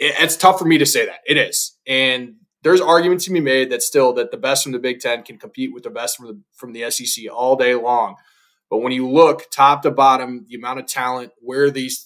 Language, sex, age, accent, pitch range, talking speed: English, male, 20-39, American, 120-145 Hz, 250 wpm